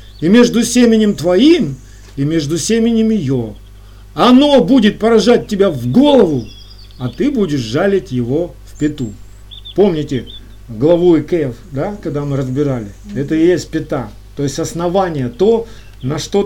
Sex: male